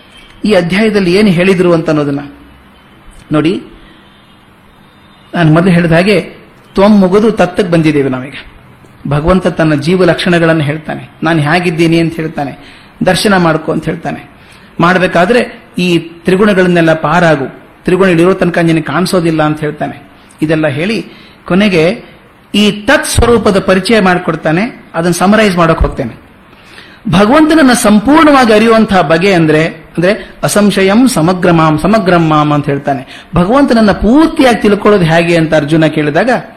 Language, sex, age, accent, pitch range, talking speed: Kannada, male, 30-49, native, 160-210 Hz, 115 wpm